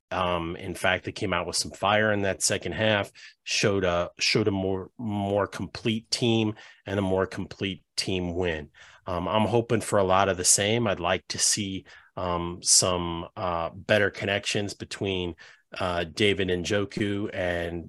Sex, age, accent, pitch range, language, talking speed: male, 30-49, American, 90-105 Hz, English, 170 wpm